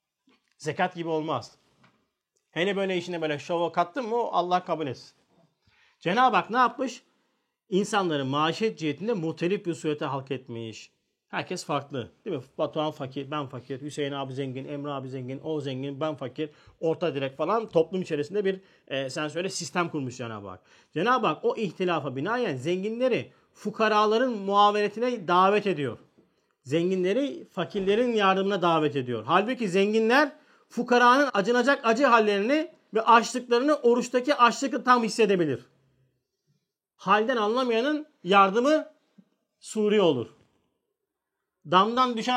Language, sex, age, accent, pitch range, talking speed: Turkish, male, 40-59, native, 145-220 Hz, 125 wpm